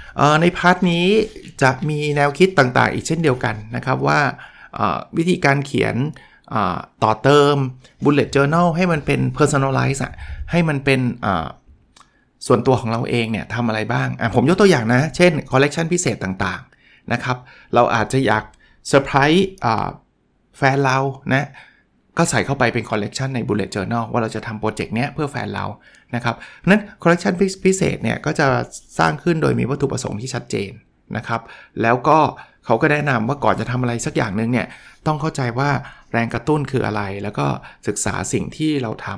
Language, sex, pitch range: Thai, male, 115-150 Hz